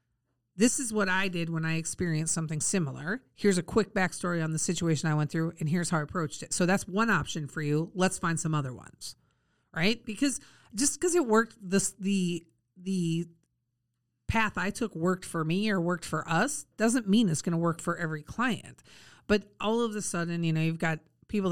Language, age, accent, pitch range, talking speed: English, 40-59, American, 155-210 Hz, 210 wpm